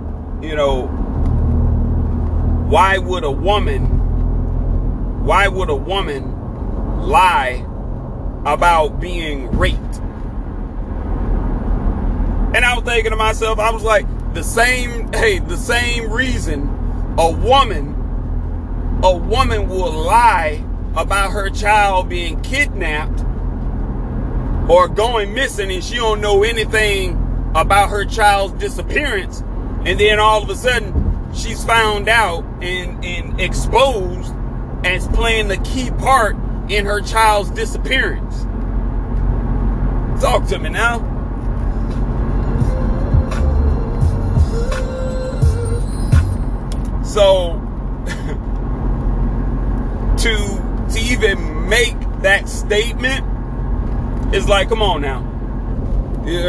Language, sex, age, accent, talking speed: English, male, 40-59, American, 95 wpm